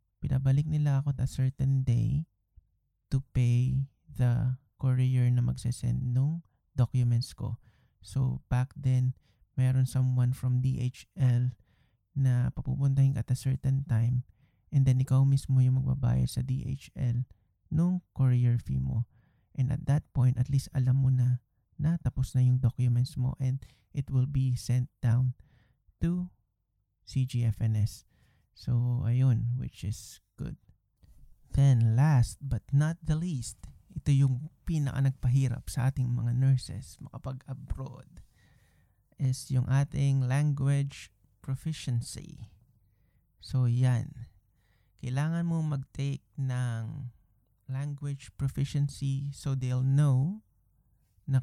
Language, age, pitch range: English, 20-39, 120-135 Hz